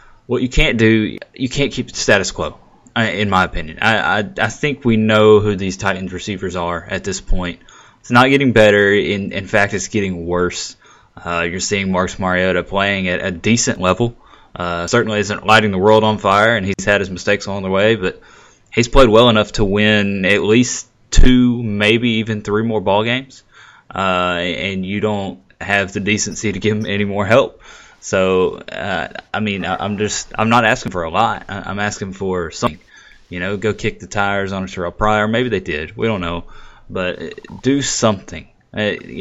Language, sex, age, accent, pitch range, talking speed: English, male, 20-39, American, 95-110 Hz, 200 wpm